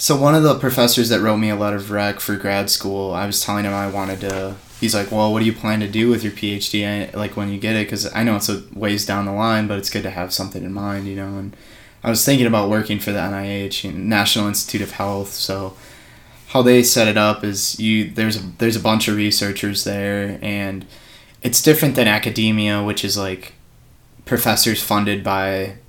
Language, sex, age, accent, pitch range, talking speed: English, male, 20-39, American, 100-115 Hz, 230 wpm